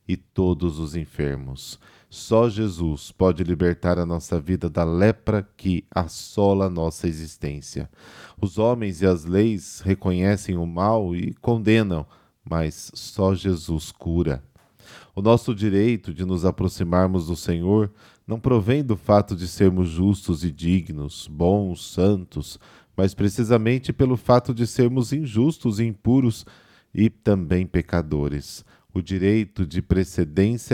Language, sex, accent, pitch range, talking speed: Portuguese, male, Brazilian, 85-110 Hz, 130 wpm